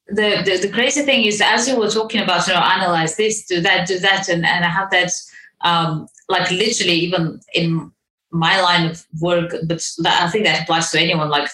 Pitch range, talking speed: 160-225 Hz, 215 wpm